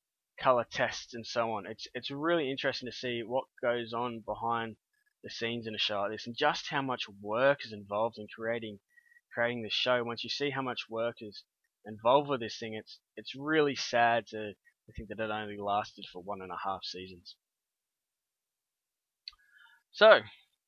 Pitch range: 110-140 Hz